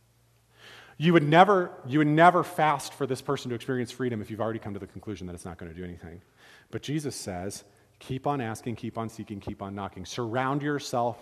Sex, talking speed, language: male, 220 wpm, English